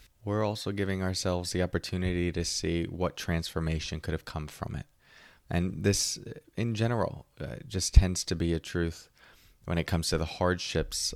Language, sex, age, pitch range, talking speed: English, male, 20-39, 80-100 Hz, 170 wpm